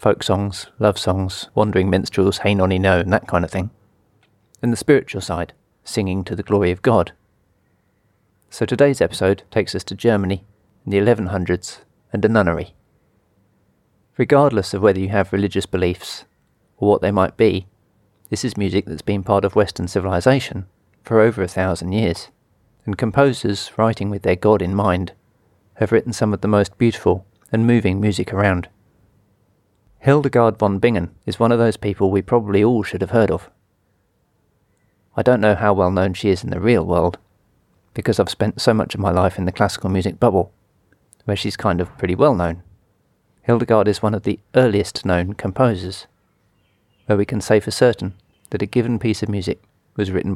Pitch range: 95-110 Hz